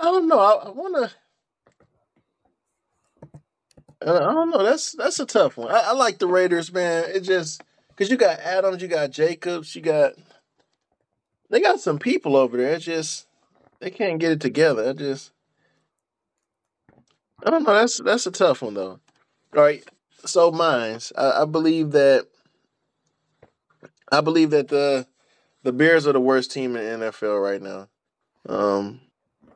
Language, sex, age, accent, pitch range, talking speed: English, male, 20-39, American, 130-175 Hz, 160 wpm